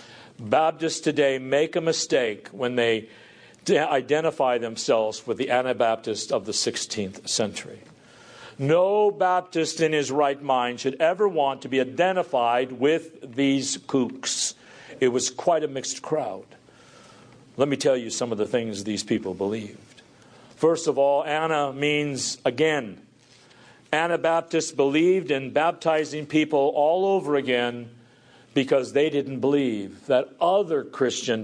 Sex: male